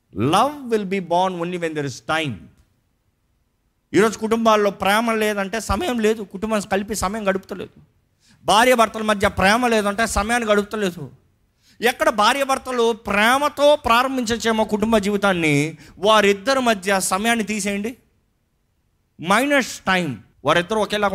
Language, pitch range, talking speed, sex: Telugu, 135-215 Hz, 120 wpm, male